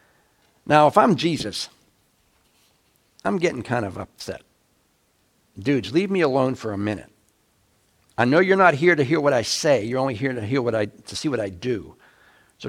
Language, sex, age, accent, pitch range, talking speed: English, male, 60-79, American, 105-145 Hz, 185 wpm